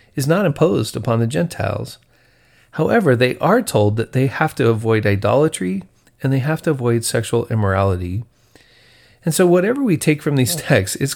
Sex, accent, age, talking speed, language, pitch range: male, American, 40-59, 170 wpm, English, 105-130 Hz